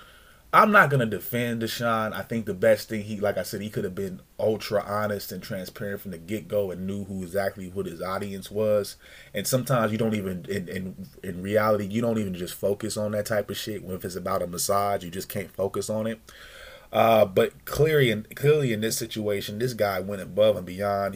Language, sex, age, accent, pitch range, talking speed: English, male, 30-49, American, 100-115 Hz, 225 wpm